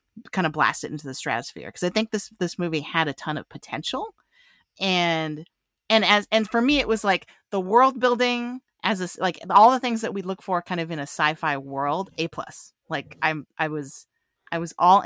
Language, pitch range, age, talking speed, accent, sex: English, 155-200 Hz, 30-49, 215 wpm, American, female